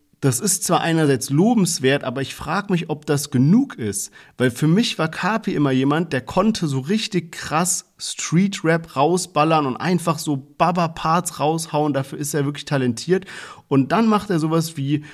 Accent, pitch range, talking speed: German, 140-180 Hz, 170 wpm